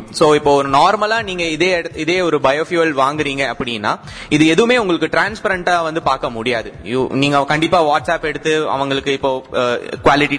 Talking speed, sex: 200 wpm, male